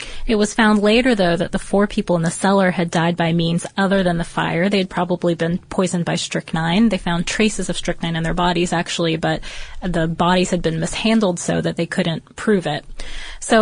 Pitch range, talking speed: 175-210 Hz, 215 wpm